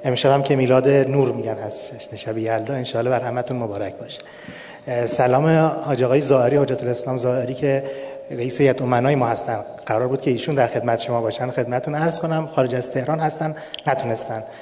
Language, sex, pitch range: Persian, male, 120-150 Hz